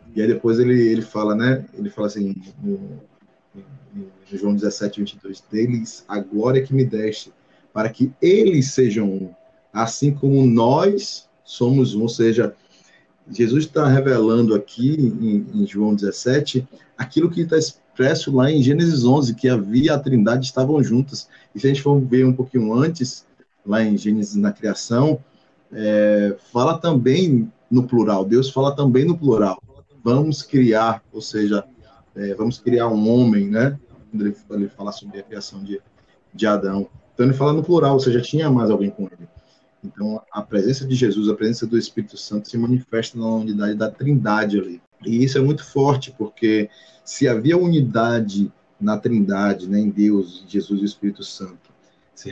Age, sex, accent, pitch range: 20-39, male, Brazilian, 105-135 Hz